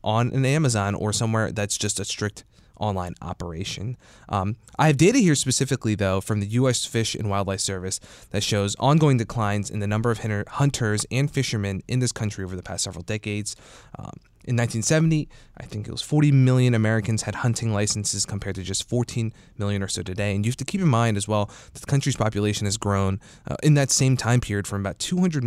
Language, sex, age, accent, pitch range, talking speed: English, male, 20-39, American, 100-120 Hz, 205 wpm